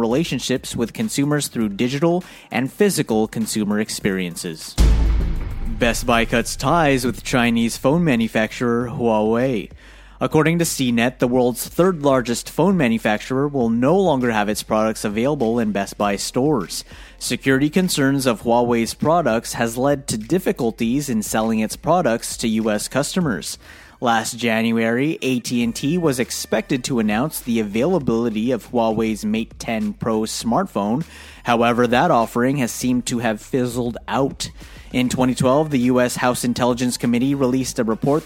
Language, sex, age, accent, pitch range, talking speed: English, male, 30-49, American, 115-135 Hz, 135 wpm